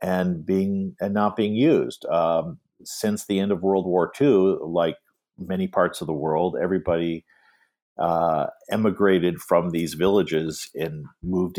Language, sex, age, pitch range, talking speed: English, male, 50-69, 80-95 Hz, 150 wpm